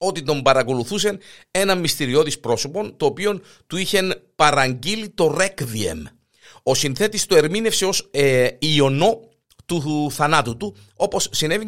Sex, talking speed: male, 130 wpm